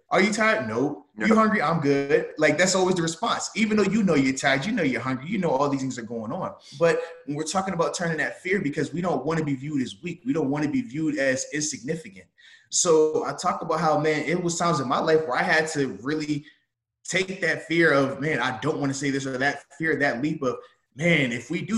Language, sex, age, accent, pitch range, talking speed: English, male, 20-39, American, 140-180 Hz, 260 wpm